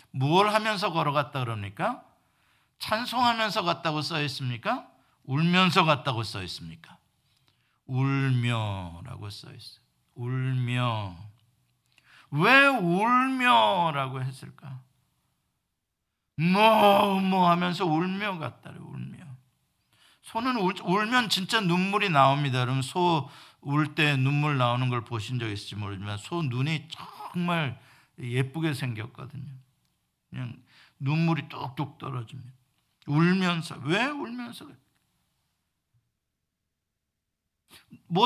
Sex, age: male, 50-69